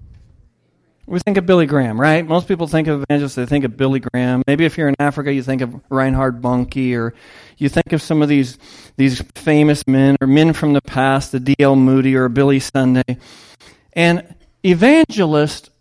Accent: American